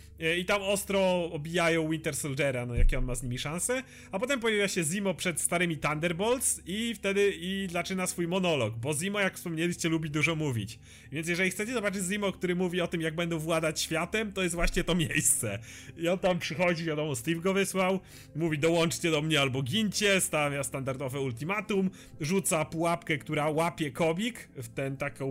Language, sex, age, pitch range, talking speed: Polish, male, 30-49, 150-190 Hz, 185 wpm